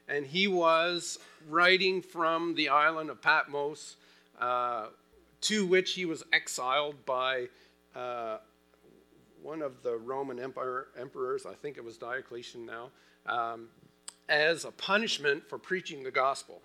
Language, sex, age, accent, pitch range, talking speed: English, male, 50-69, American, 95-155 Hz, 130 wpm